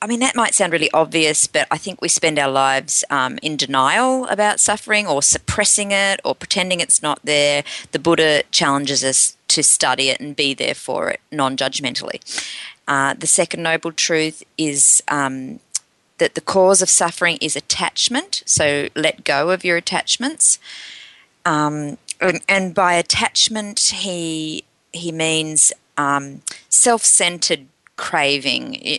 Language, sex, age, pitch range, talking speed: English, female, 30-49, 140-185 Hz, 150 wpm